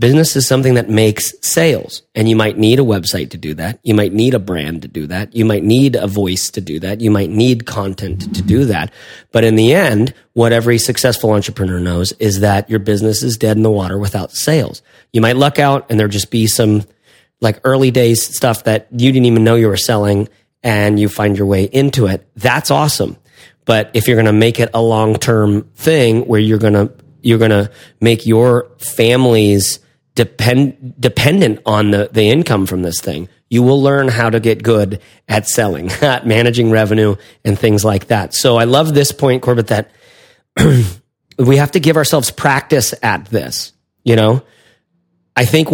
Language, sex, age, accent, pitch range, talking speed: English, male, 30-49, American, 105-130 Hz, 200 wpm